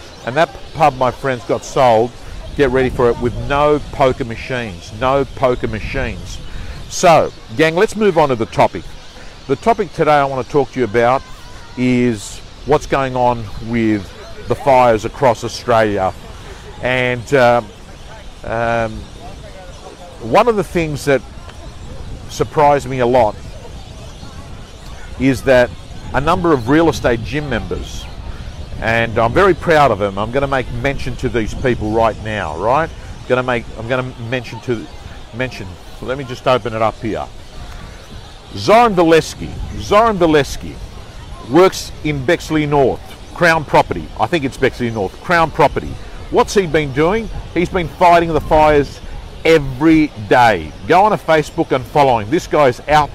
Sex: male